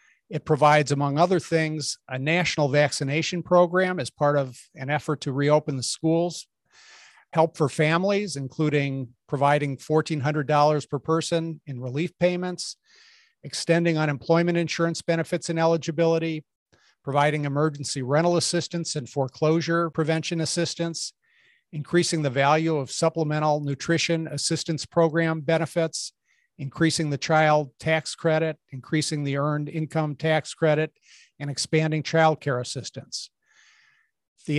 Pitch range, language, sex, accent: 145-170 Hz, English, male, American